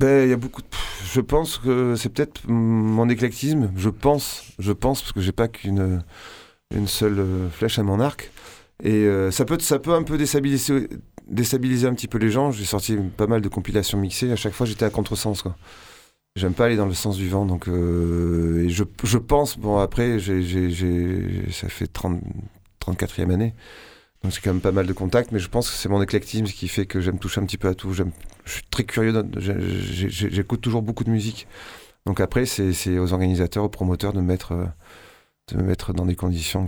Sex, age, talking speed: male, 30-49, 220 wpm